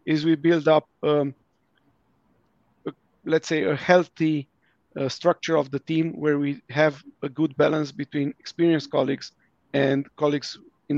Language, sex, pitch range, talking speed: Romanian, male, 145-160 Hz, 150 wpm